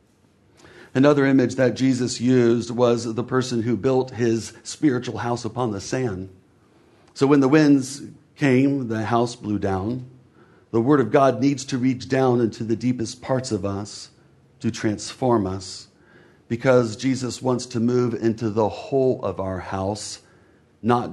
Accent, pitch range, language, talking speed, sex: American, 110-125 Hz, English, 155 wpm, male